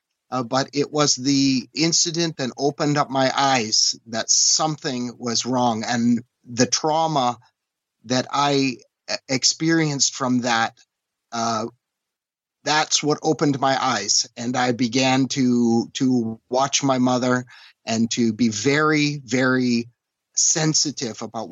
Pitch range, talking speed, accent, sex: 120-145 Hz, 125 wpm, American, male